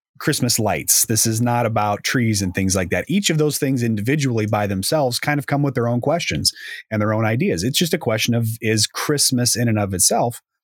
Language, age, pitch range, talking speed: English, 30-49, 100-125 Hz, 225 wpm